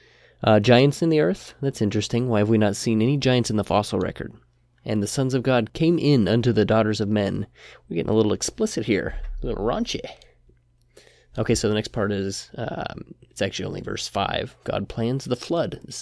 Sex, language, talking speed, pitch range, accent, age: male, English, 210 wpm, 100-115 Hz, American, 20-39